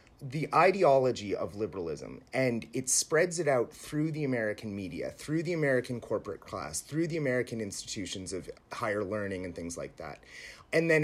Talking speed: 170 wpm